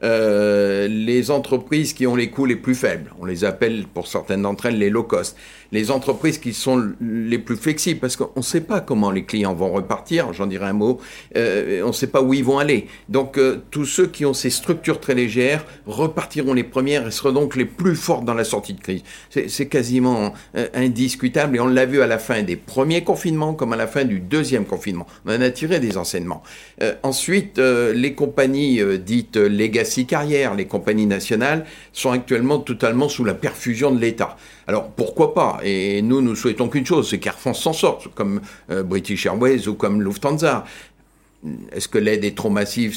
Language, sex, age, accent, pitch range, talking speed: French, male, 50-69, French, 105-140 Hz, 210 wpm